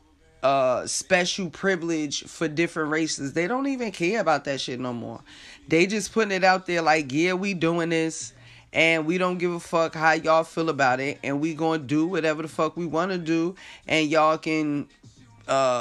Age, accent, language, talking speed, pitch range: 20-39, American, English, 195 wpm, 140-175 Hz